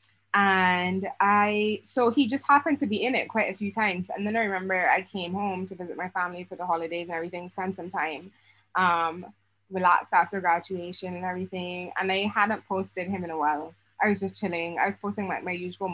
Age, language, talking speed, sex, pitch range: 20-39, English, 215 wpm, female, 180-250 Hz